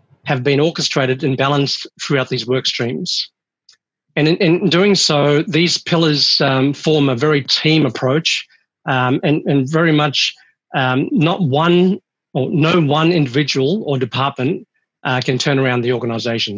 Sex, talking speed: male, 150 wpm